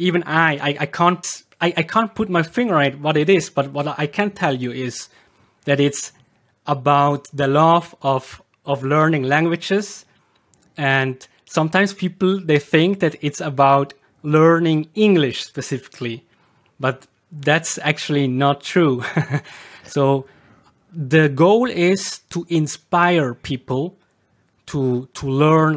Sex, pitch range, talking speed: male, 140-175 Hz, 135 wpm